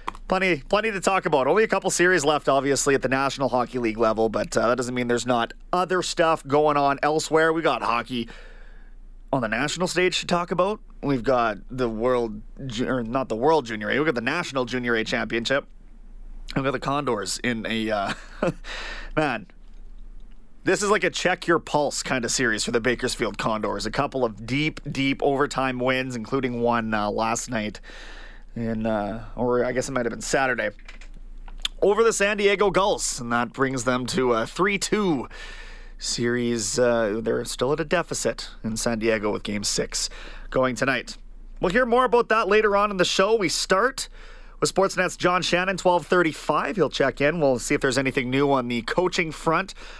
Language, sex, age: English, male, 30-49